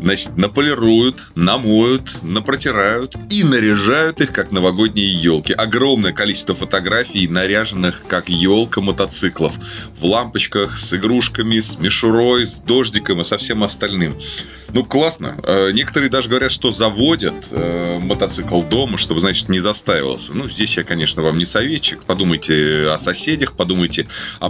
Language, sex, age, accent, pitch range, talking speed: Russian, male, 20-39, native, 90-115 Hz, 135 wpm